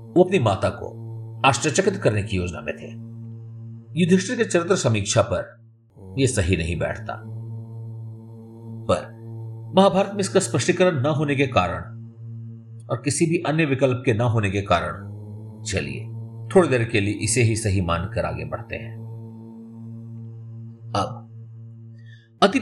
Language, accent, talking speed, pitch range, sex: Hindi, native, 140 wpm, 105-115 Hz, male